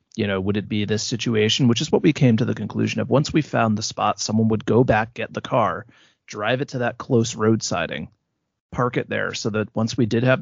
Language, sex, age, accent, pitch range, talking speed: English, male, 30-49, American, 105-125 Hz, 255 wpm